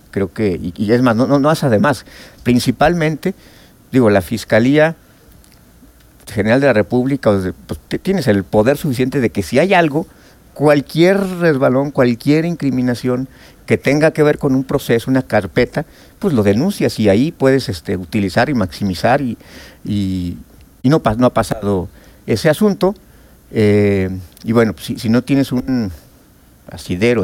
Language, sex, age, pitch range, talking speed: Spanish, male, 50-69, 110-140 Hz, 160 wpm